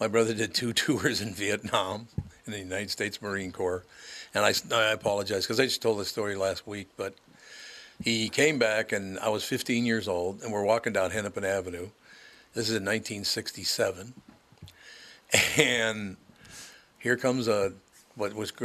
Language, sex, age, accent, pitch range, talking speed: English, male, 60-79, American, 95-115 Hz, 165 wpm